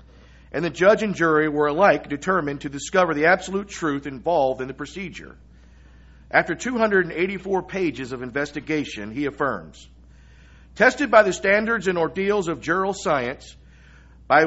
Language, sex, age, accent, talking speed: English, male, 50-69, American, 140 wpm